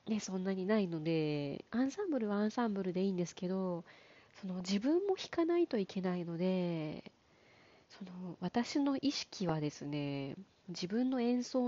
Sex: female